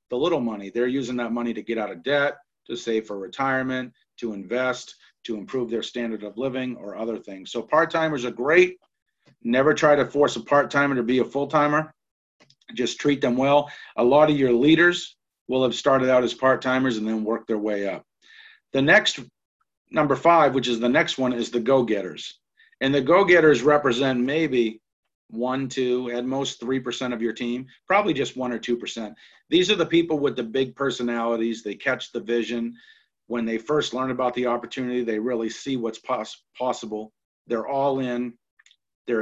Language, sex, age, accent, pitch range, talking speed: English, male, 50-69, American, 115-140 Hz, 185 wpm